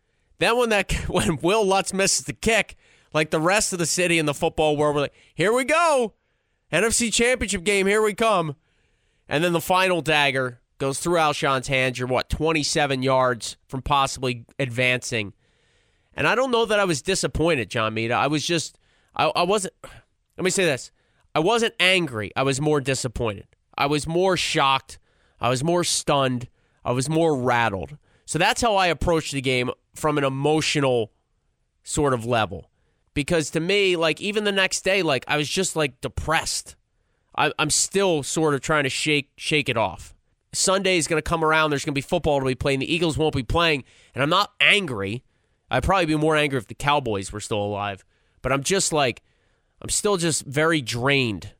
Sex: male